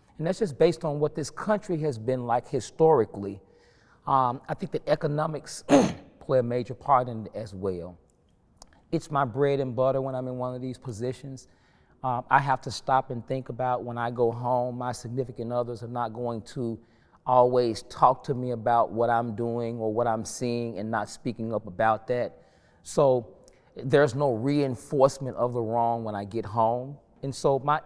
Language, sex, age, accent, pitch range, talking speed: English, male, 30-49, American, 120-145 Hz, 190 wpm